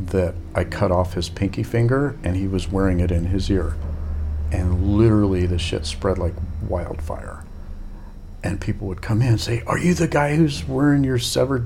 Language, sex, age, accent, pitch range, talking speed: English, male, 50-69, American, 90-105 Hz, 190 wpm